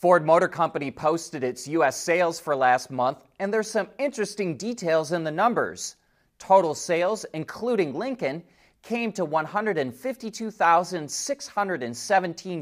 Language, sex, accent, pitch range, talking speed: English, male, American, 130-195 Hz, 120 wpm